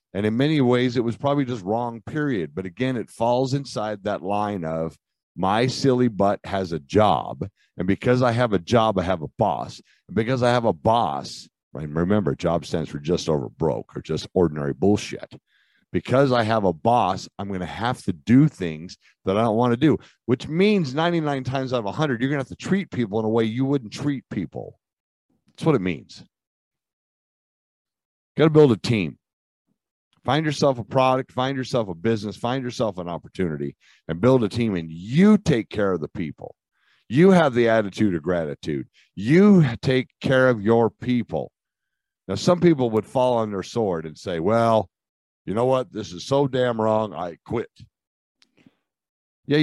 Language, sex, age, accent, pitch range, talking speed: English, male, 50-69, American, 100-135 Hz, 190 wpm